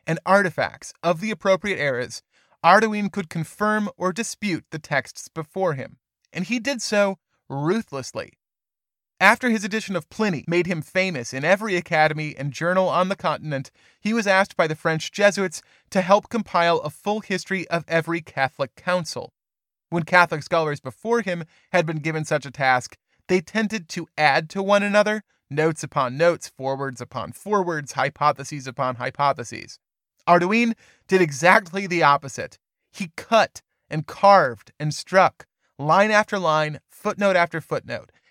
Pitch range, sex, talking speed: 150-205 Hz, male, 150 wpm